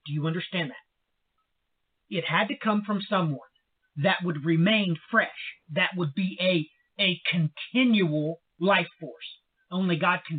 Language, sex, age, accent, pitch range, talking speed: English, male, 40-59, American, 165-235 Hz, 145 wpm